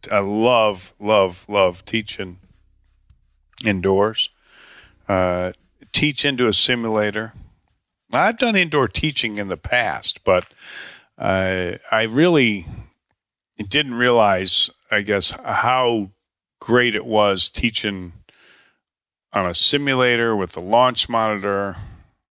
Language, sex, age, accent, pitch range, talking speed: English, male, 40-59, American, 90-115 Hz, 100 wpm